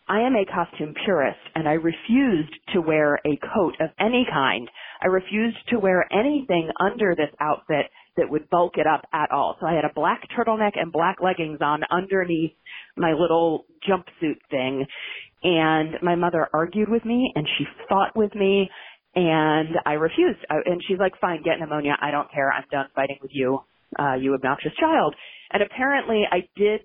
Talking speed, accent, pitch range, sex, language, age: 180 wpm, American, 155-210 Hz, female, English, 40-59